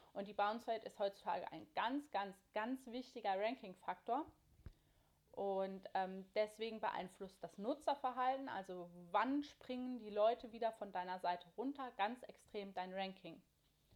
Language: German